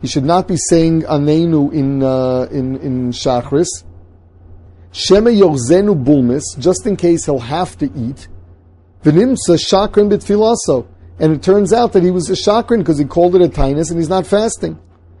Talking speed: 180 wpm